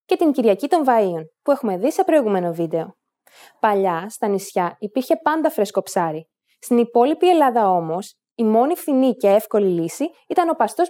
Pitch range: 195-280 Hz